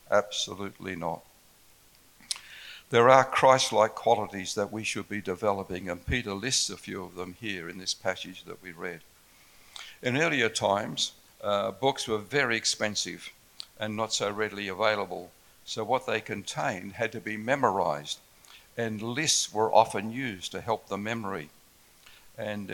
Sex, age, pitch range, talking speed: male, 60-79, 100-115 Hz, 150 wpm